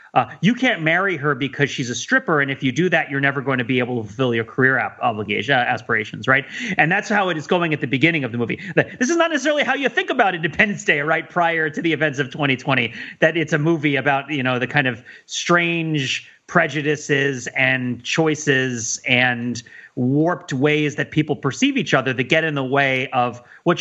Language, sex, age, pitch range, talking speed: English, male, 30-49, 135-175 Hz, 210 wpm